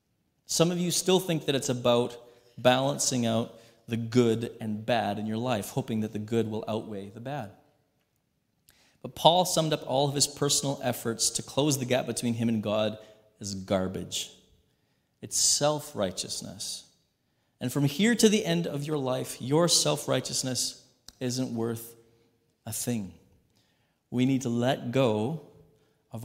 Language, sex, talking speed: English, male, 155 wpm